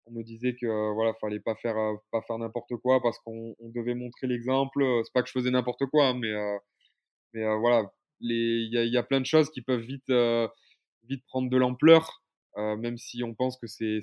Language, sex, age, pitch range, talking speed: French, male, 20-39, 115-130 Hz, 240 wpm